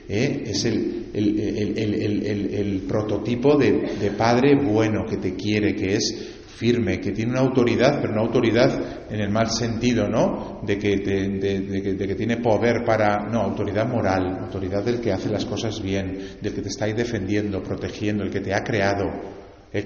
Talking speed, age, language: 205 wpm, 40-59, Spanish